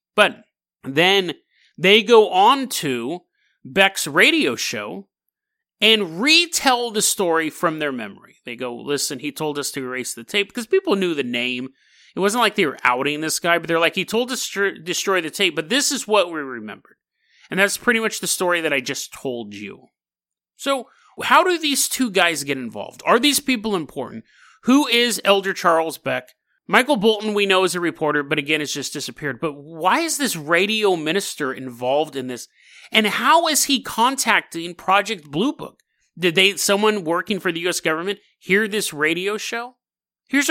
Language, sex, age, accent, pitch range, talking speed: English, male, 30-49, American, 145-220 Hz, 185 wpm